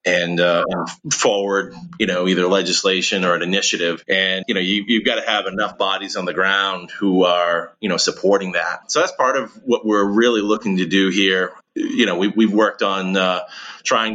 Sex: male